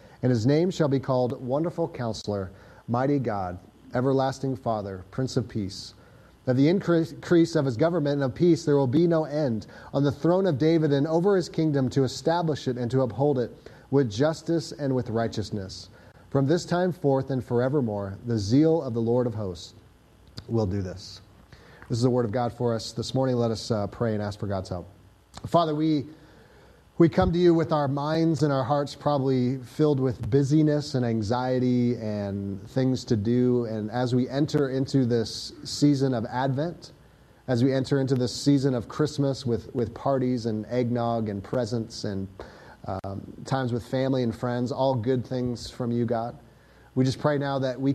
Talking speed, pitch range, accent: 185 wpm, 115-145 Hz, American